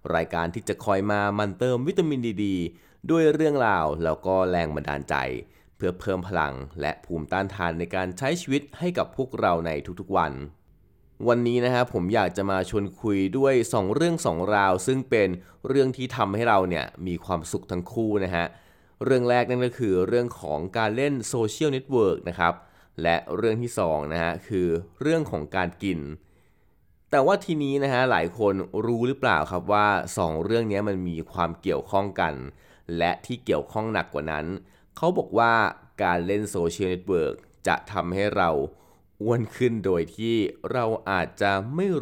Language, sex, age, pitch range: Thai, male, 20-39, 85-120 Hz